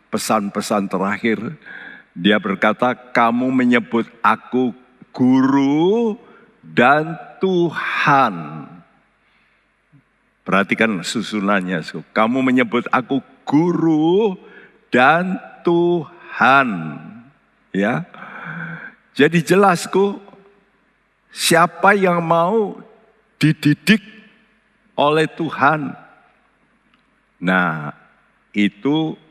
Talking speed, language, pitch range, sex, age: 60 wpm, Indonesian, 105-175 Hz, male, 60-79